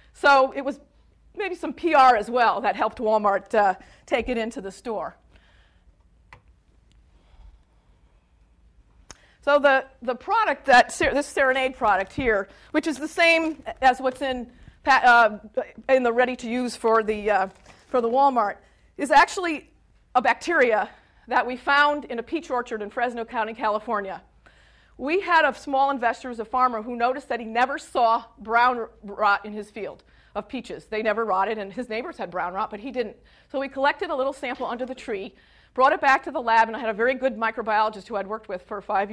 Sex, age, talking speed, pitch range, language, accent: female, 40-59, 185 wpm, 215-270 Hz, English, American